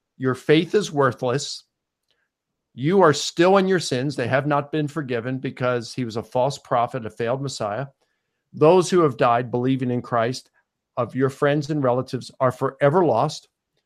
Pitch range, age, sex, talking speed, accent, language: 125-155 Hz, 50-69, male, 170 wpm, American, English